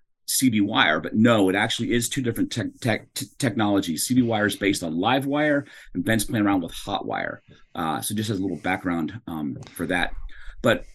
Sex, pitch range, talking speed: male, 95-120 Hz, 210 wpm